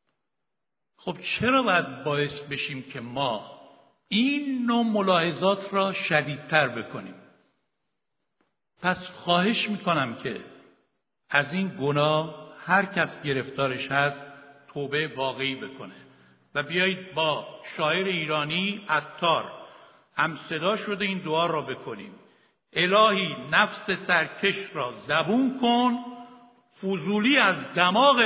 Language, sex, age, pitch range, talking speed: Persian, male, 60-79, 150-210 Hz, 105 wpm